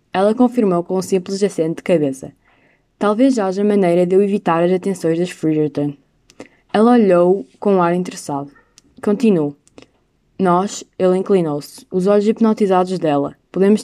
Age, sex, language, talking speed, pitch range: 20-39, female, Portuguese, 145 wpm, 165-205 Hz